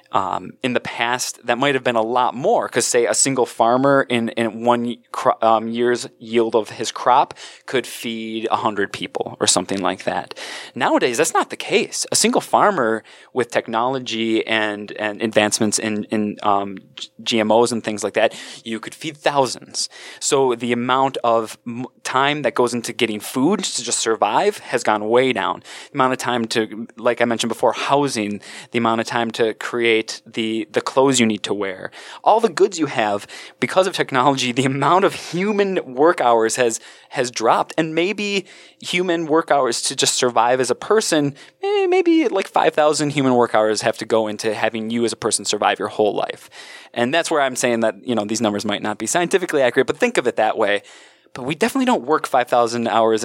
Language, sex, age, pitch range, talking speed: English, male, 20-39, 110-140 Hz, 200 wpm